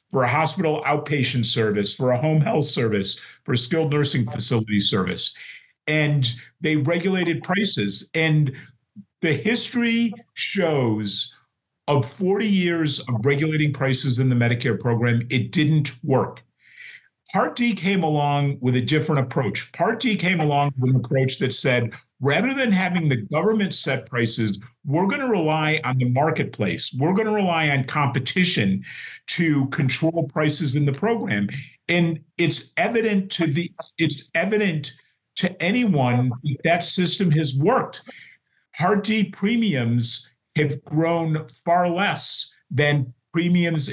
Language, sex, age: English, male, 50-69